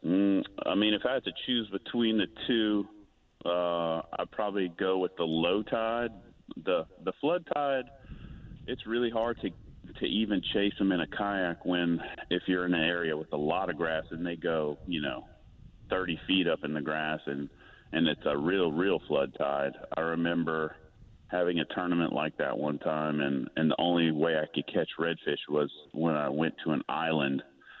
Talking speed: 190 wpm